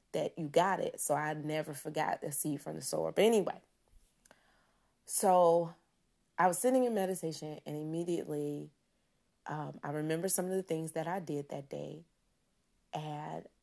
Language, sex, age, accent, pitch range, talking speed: English, female, 30-49, American, 150-170 Hz, 160 wpm